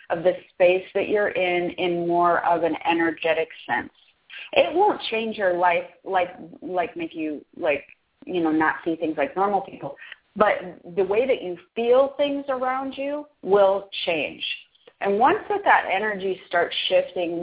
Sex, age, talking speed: female, 30-49, 160 wpm